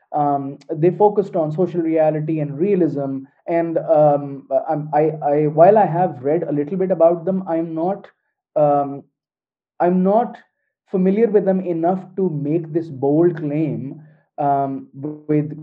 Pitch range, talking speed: 140-170 Hz, 140 wpm